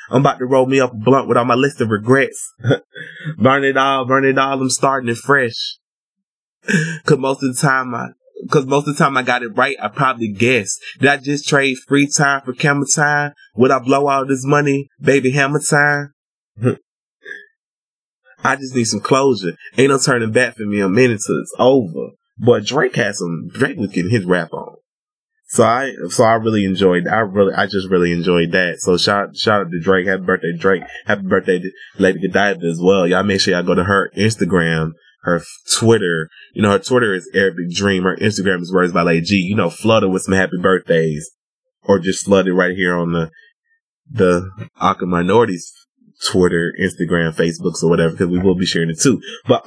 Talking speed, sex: 210 wpm, male